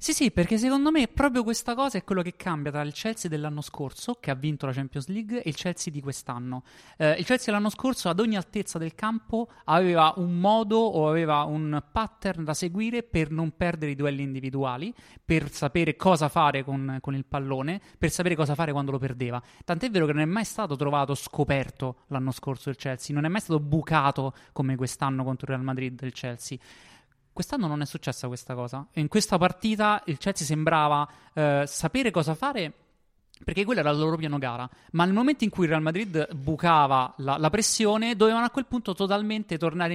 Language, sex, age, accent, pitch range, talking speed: Italian, male, 20-39, native, 140-185 Hz, 205 wpm